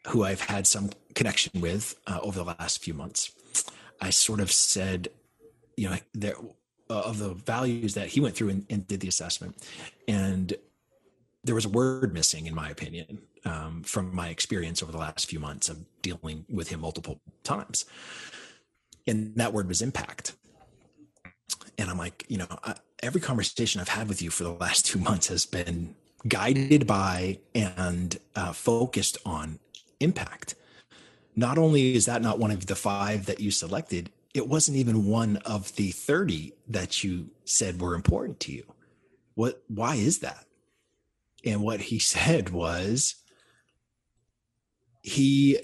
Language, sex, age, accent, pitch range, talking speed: English, male, 30-49, American, 90-115 Hz, 160 wpm